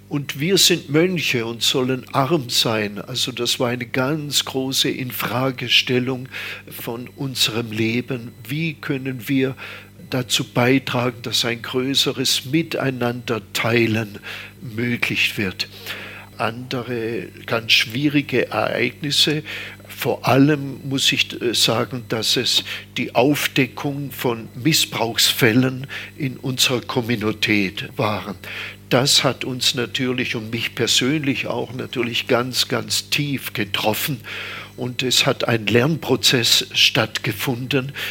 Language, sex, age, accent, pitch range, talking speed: German, male, 50-69, German, 115-135 Hz, 105 wpm